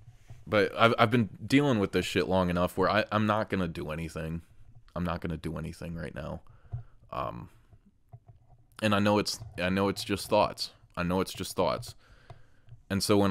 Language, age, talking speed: English, 20-39, 200 wpm